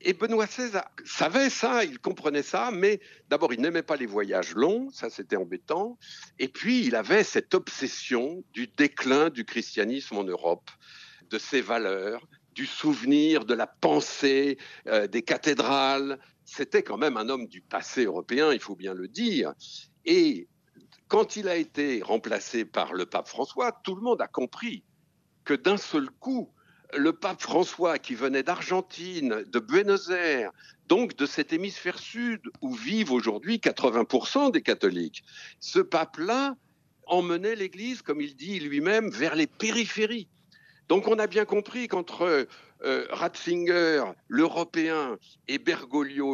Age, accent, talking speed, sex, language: 60-79, French, 150 wpm, male, French